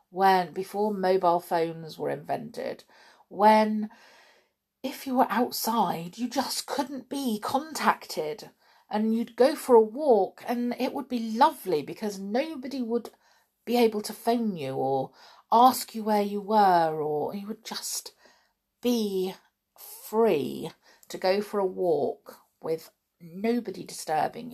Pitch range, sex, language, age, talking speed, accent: 175-245 Hz, female, English, 40-59, 135 wpm, British